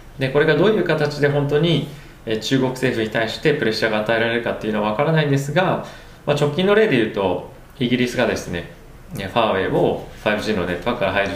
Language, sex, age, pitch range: Japanese, male, 20-39, 95-130 Hz